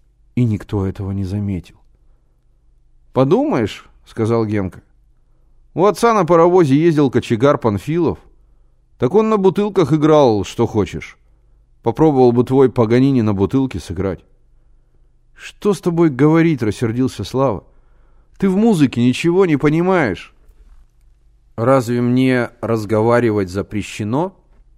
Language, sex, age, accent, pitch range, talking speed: Russian, male, 30-49, native, 100-130 Hz, 110 wpm